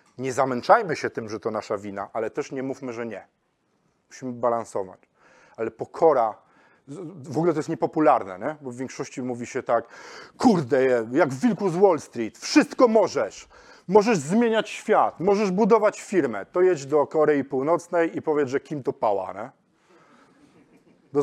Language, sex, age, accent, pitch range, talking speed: Polish, male, 40-59, native, 130-170 Hz, 160 wpm